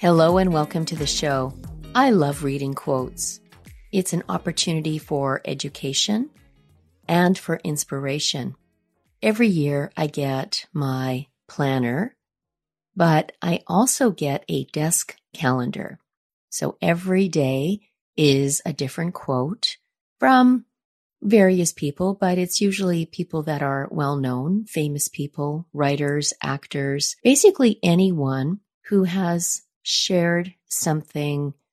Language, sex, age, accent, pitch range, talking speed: English, female, 40-59, American, 140-185 Hz, 110 wpm